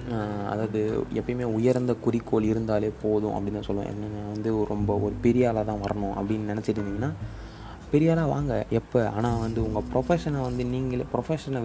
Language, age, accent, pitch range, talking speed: Tamil, 20-39, native, 105-120 Hz, 155 wpm